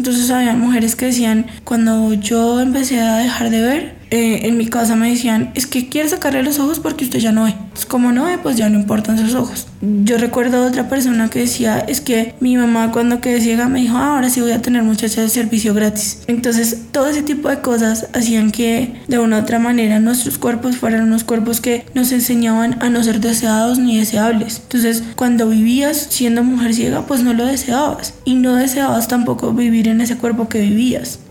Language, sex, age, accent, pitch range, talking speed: Spanish, female, 20-39, Colombian, 225-245 Hz, 215 wpm